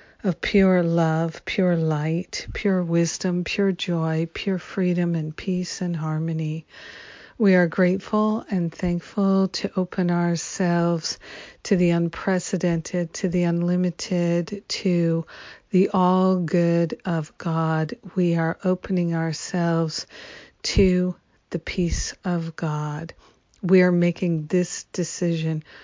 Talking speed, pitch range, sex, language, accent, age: 115 wpm, 165-180 Hz, female, English, American, 50-69